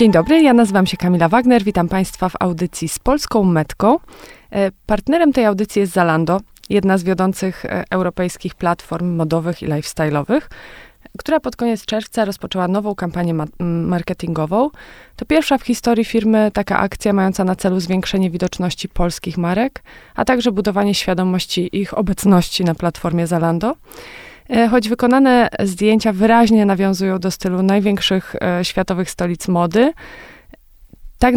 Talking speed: 135 wpm